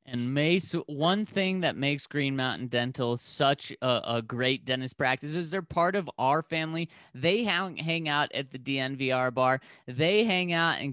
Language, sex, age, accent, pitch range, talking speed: English, male, 30-49, American, 125-165 Hz, 180 wpm